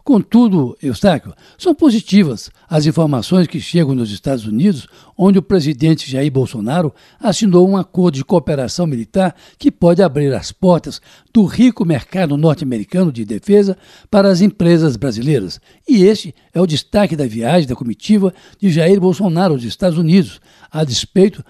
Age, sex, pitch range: 60-79, male, 145-195 Hz